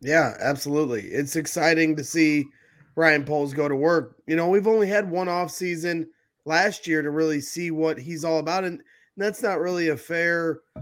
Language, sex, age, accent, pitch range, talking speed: English, male, 20-39, American, 145-165 Hz, 190 wpm